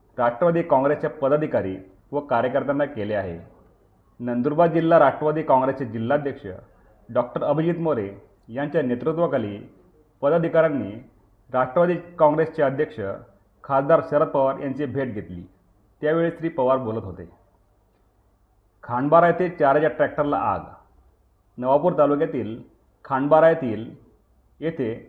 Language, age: Marathi, 40-59